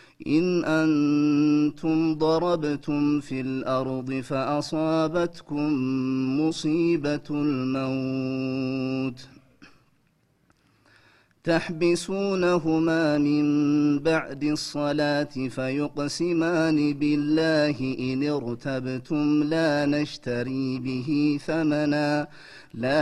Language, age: Amharic, 30-49